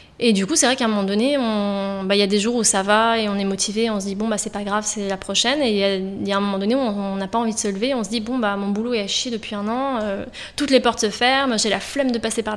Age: 20-39